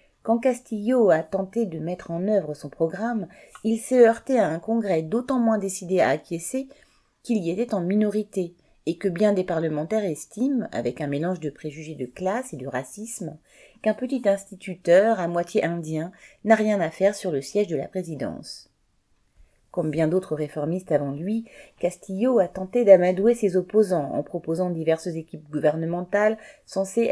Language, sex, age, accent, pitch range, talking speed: French, female, 30-49, French, 155-215 Hz, 170 wpm